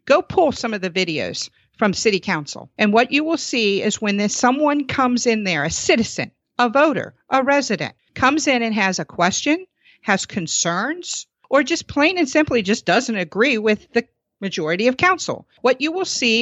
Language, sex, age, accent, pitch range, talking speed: English, female, 50-69, American, 190-250 Hz, 185 wpm